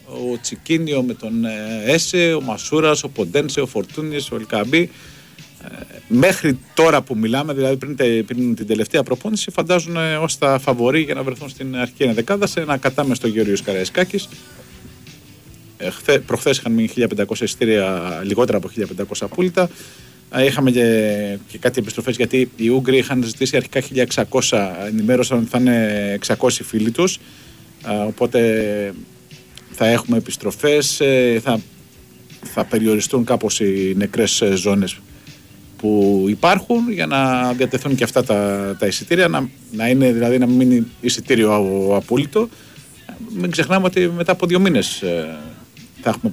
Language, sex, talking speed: Greek, male, 130 wpm